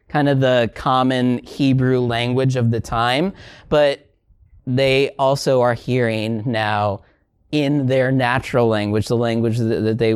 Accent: American